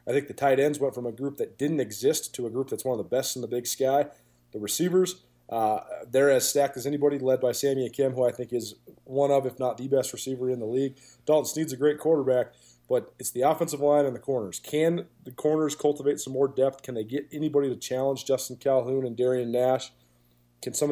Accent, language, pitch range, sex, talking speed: American, English, 120-140 Hz, male, 240 wpm